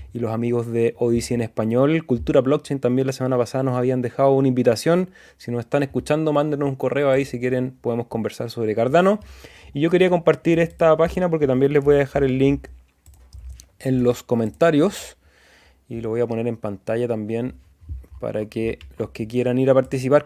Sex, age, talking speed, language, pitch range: male, 20-39, 195 wpm, Spanish, 115-145 Hz